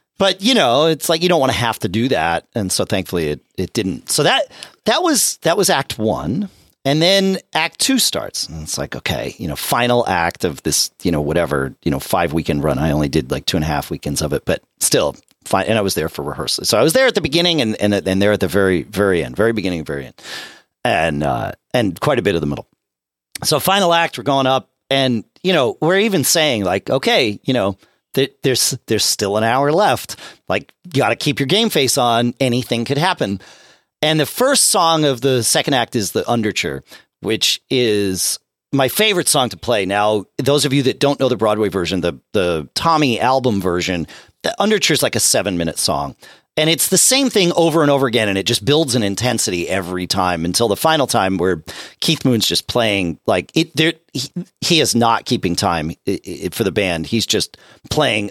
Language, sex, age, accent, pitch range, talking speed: English, male, 40-59, American, 95-160 Hz, 220 wpm